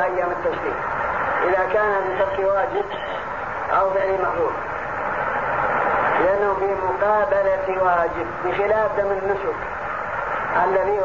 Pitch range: 195-225 Hz